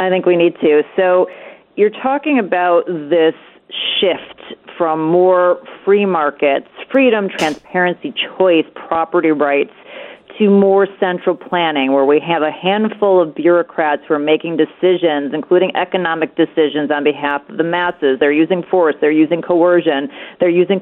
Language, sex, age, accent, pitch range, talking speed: English, female, 40-59, American, 160-195 Hz, 145 wpm